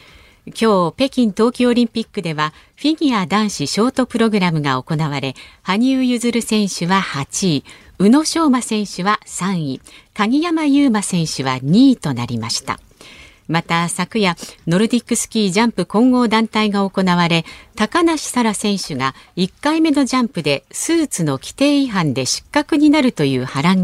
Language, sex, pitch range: Japanese, female, 150-230 Hz